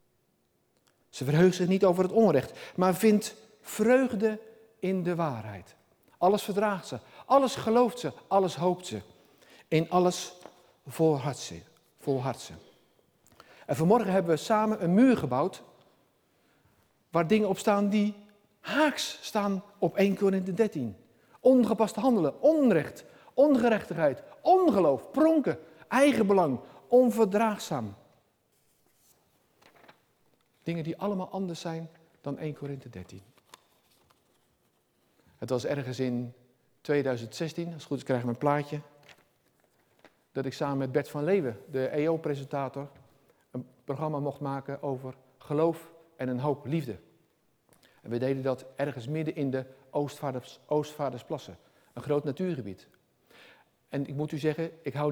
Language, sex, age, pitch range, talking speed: Dutch, male, 50-69, 135-205 Hz, 125 wpm